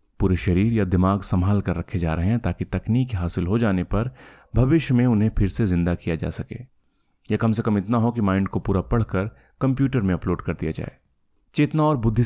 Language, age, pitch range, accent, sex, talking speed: Hindi, 30-49, 90-115 Hz, native, male, 220 wpm